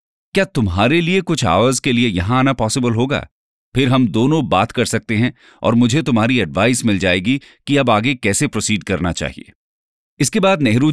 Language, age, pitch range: English, 40-59, 105-135 Hz